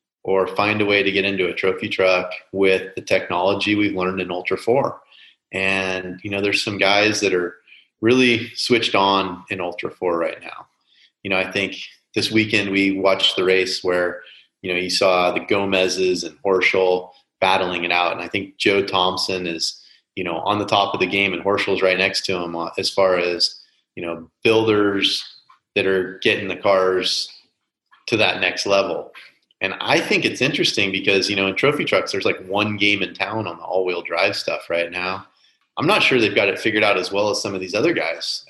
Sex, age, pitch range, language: male, 30-49, 90-105 Hz, English